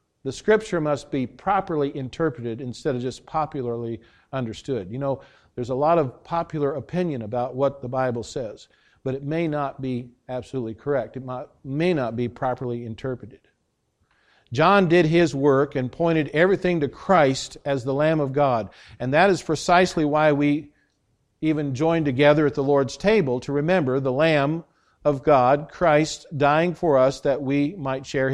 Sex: male